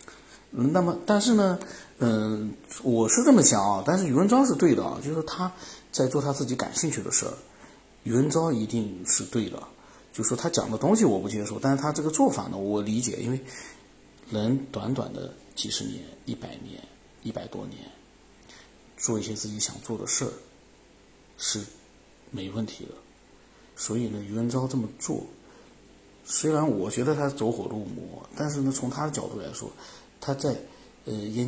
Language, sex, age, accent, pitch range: Chinese, male, 50-69, native, 110-140 Hz